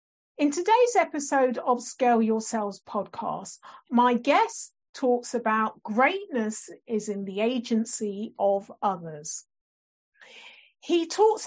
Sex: female